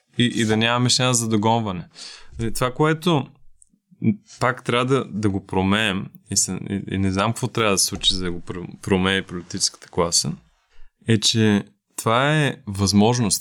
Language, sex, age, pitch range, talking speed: Bulgarian, male, 20-39, 105-130 Hz, 160 wpm